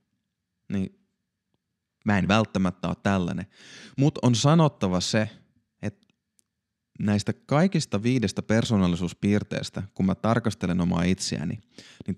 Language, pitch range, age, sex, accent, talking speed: Finnish, 90-115 Hz, 30-49, male, native, 105 wpm